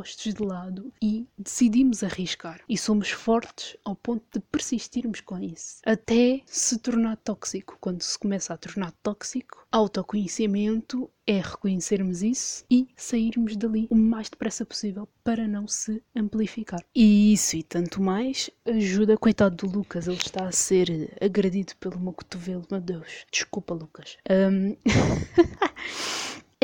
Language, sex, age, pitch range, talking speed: Portuguese, female, 20-39, 185-220 Hz, 135 wpm